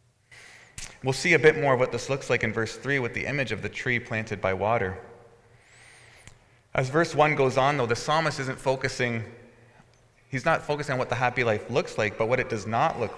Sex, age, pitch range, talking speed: male, 30-49, 110-135 Hz, 220 wpm